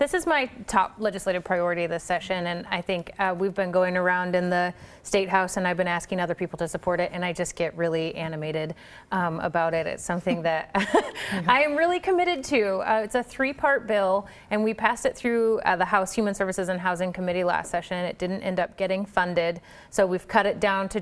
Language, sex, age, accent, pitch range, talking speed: English, female, 30-49, American, 175-200 Hz, 225 wpm